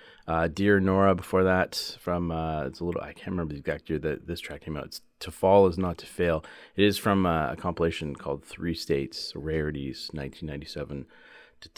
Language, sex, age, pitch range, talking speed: English, male, 30-49, 75-95 Hz, 200 wpm